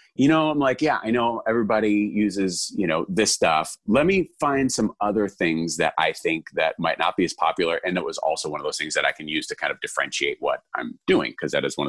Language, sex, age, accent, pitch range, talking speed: English, male, 30-49, American, 90-130 Hz, 255 wpm